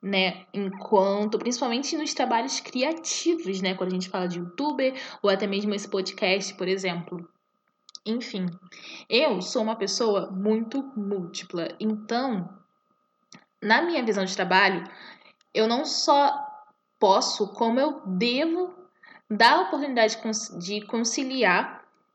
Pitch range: 190-290 Hz